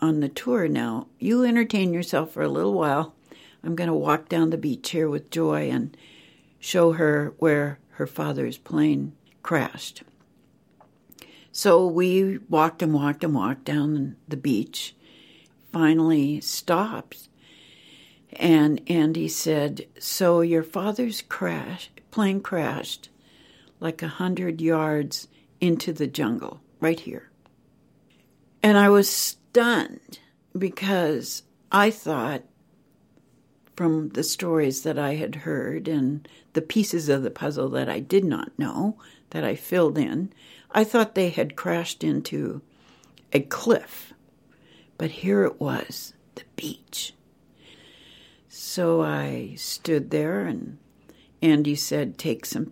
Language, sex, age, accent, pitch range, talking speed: English, female, 60-79, American, 150-180 Hz, 125 wpm